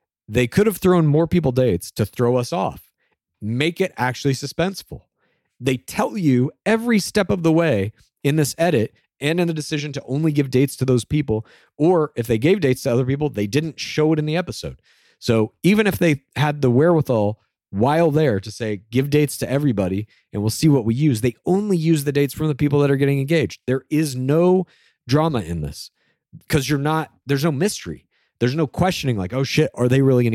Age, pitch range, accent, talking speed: 40-59, 115-155 Hz, American, 210 wpm